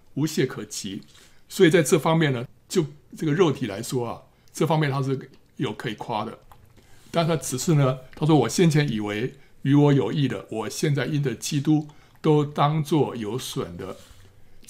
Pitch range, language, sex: 125-155 Hz, Chinese, male